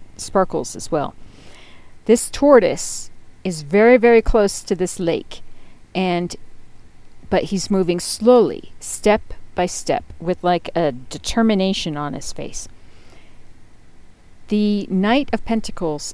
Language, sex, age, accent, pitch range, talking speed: English, female, 50-69, American, 165-225 Hz, 115 wpm